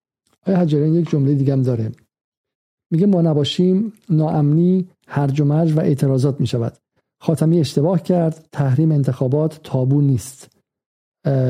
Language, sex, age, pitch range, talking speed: Persian, male, 50-69, 130-160 Hz, 115 wpm